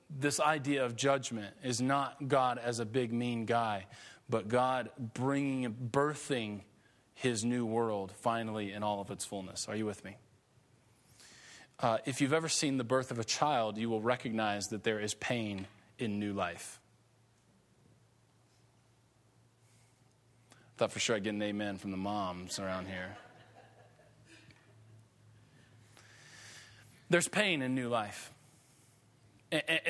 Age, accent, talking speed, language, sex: 30-49, American, 135 wpm, English, male